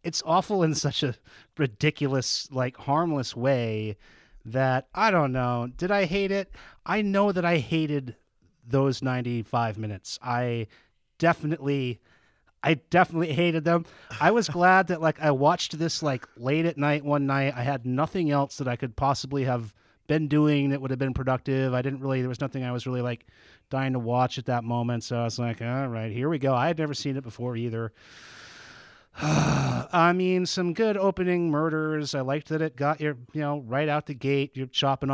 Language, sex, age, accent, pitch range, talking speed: English, male, 30-49, American, 125-155 Hz, 190 wpm